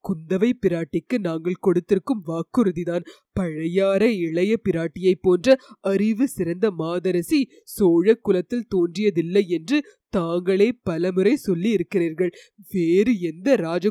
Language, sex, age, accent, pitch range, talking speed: Tamil, female, 30-49, native, 180-225 Hz, 75 wpm